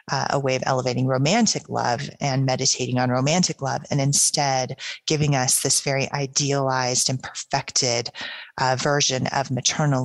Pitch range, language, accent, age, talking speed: 135-170 Hz, English, American, 30-49, 150 wpm